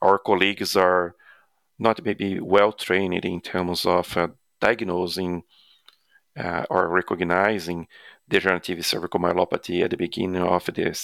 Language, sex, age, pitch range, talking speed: English, male, 40-59, 85-95 Hz, 120 wpm